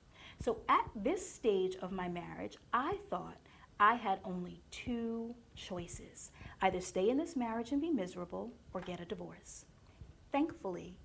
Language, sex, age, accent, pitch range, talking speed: English, female, 30-49, American, 175-230 Hz, 145 wpm